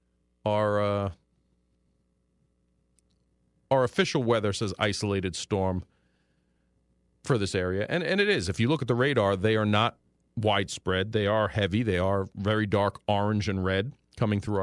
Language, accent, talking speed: English, American, 150 wpm